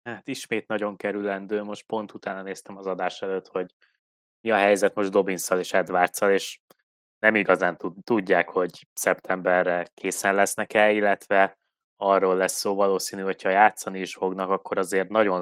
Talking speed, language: 155 wpm, Hungarian